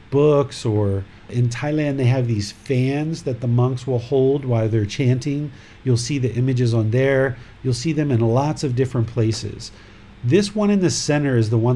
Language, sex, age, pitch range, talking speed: English, male, 40-59, 115-145 Hz, 195 wpm